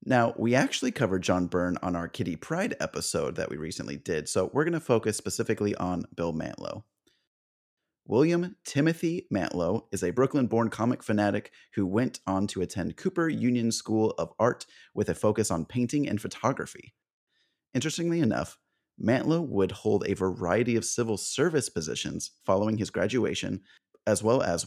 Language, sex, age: English, male, 30-49